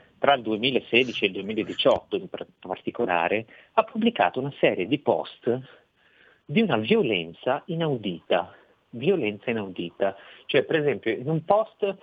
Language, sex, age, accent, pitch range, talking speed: Italian, male, 30-49, native, 105-145 Hz, 130 wpm